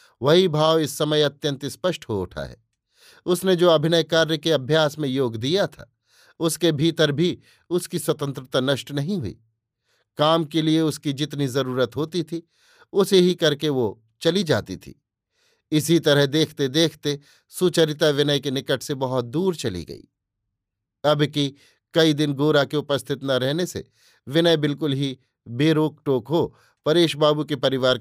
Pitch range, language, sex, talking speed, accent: 135-165 Hz, Hindi, male, 160 wpm, native